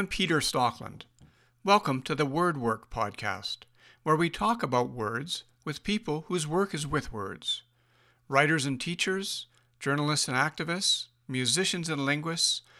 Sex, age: male, 60-79